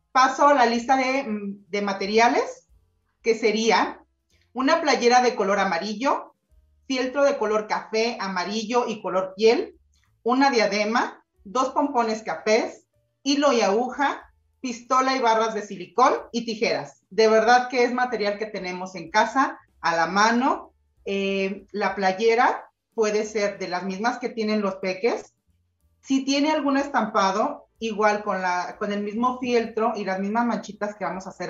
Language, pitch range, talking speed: Spanish, 195-245 Hz, 150 wpm